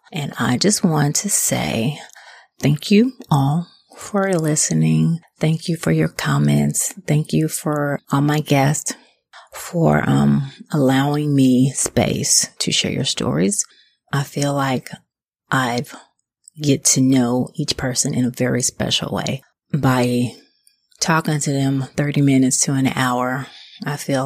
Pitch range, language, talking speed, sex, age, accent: 125-170 Hz, English, 140 wpm, female, 30-49, American